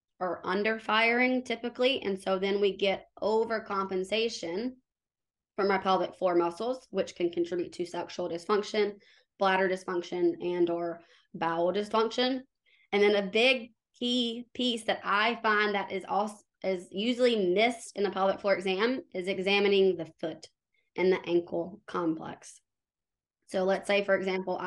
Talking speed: 145 wpm